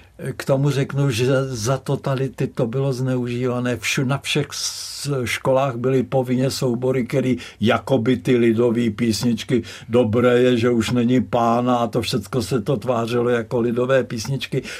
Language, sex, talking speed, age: Czech, male, 140 wpm, 60-79